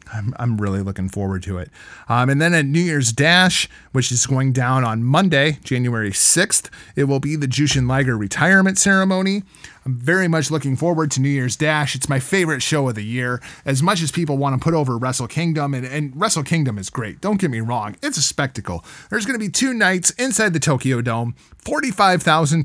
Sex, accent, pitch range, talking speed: male, American, 130-180 Hz, 210 wpm